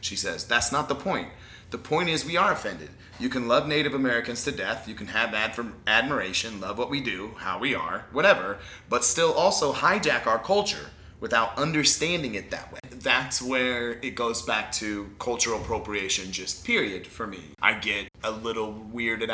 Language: English